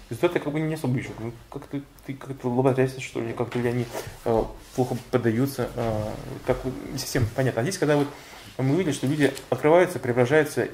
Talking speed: 175 wpm